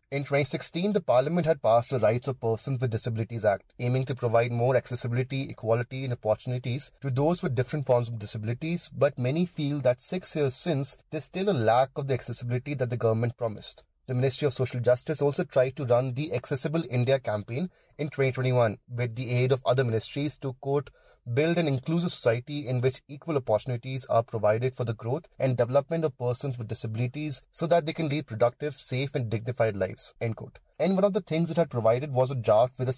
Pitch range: 120-145 Hz